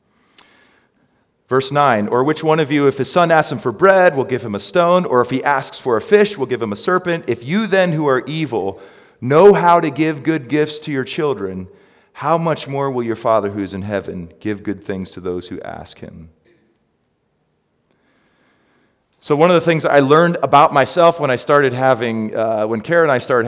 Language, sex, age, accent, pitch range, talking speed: English, male, 40-59, American, 110-155 Hz, 210 wpm